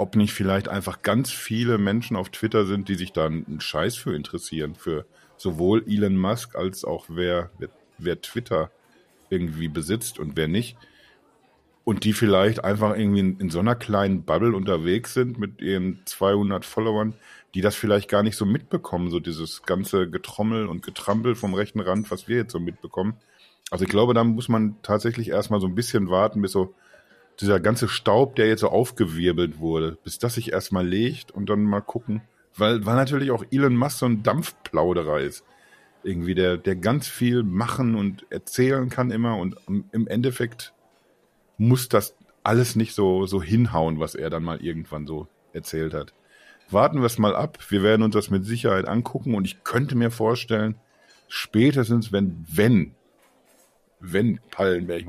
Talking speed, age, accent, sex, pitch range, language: 175 wpm, 50-69, German, male, 95-115 Hz, German